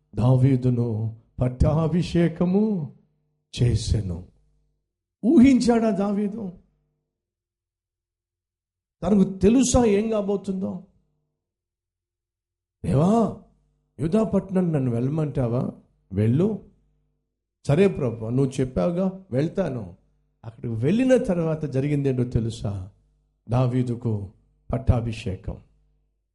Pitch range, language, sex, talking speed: 105-165 Hz, Telugu, male, 60 wpm